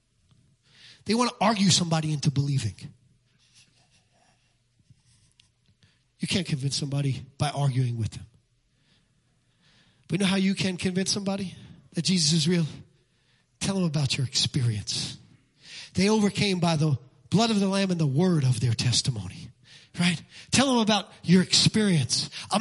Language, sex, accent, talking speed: English, male, American, 140 wpm